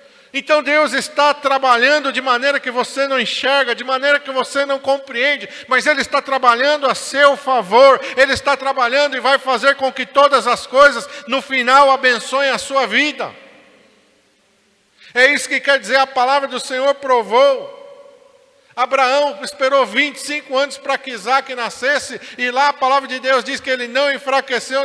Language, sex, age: Portuguese, male, 50-69